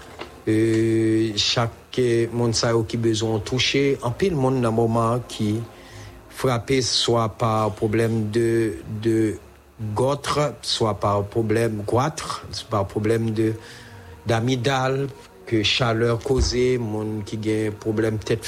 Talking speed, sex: 125 wpm, male